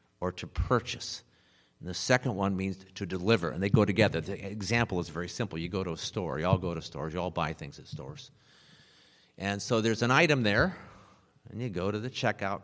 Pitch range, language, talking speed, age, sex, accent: 95-135 Hz, English, 225 wpm, 50-69, male, American